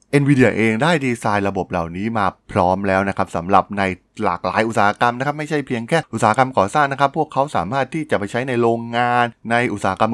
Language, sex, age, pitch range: Thai, male, 20-39, 100-135 Hz